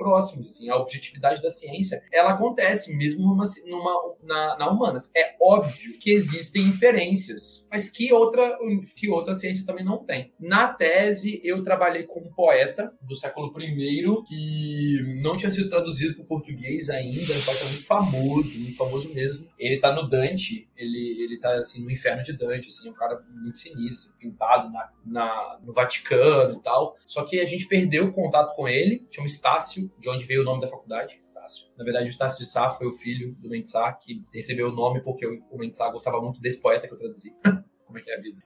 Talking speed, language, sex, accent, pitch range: 195 wpm, Portuguese, male, Brazilian, 130-190 Hz